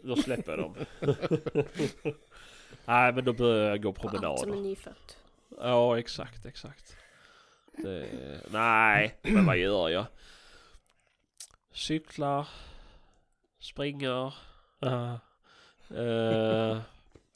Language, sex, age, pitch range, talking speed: Swedish, male, 20-39, 110-155 Hz, 90 wpm